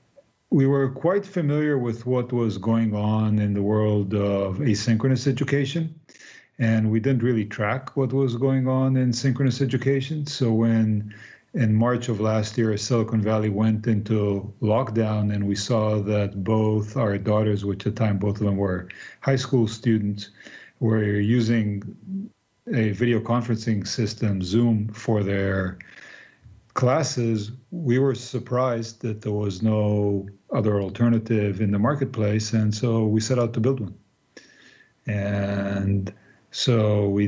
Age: 40-59